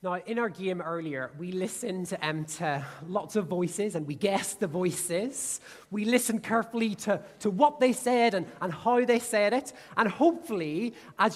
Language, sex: English, male